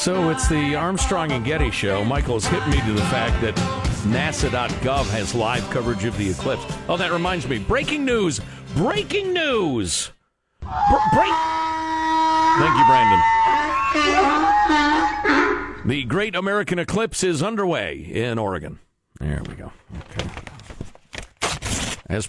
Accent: American